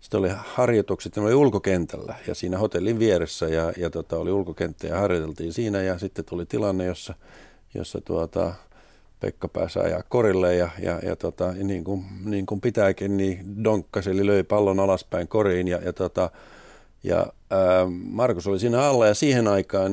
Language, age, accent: Finnish, 50-69, native